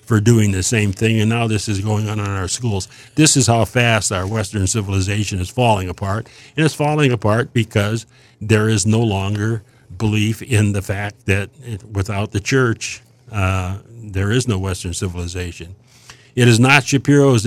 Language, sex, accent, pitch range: English, male, American, 105-125 Hz